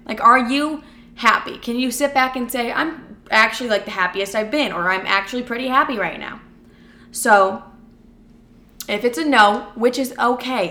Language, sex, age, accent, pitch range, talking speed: English, female, 20-39, American, 205-255 Hz, 180 wpm